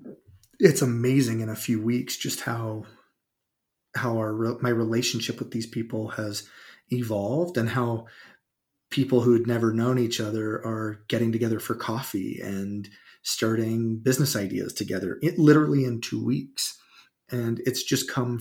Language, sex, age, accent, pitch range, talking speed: English, male, 30-49, American, 110-125 Hz, 145 wpm